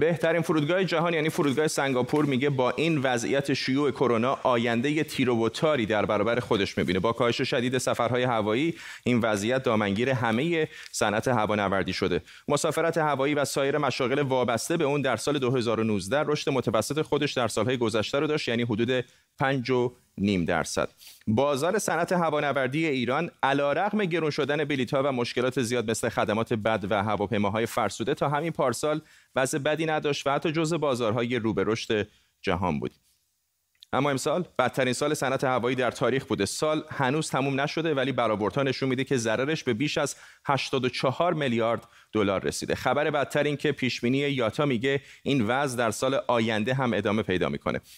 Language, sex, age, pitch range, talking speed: Persian, male, 30-49, 115-150 Hz, 165 wpm